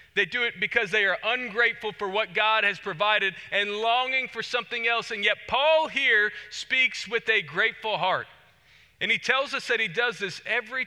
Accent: American